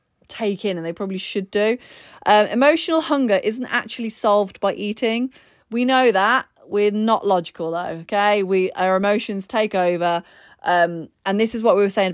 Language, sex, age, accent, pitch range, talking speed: English, female, 20-39, British, 175-220 Hz, 180 wpm